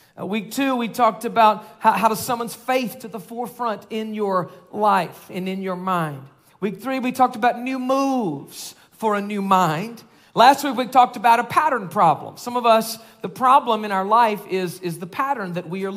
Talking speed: 205 wpm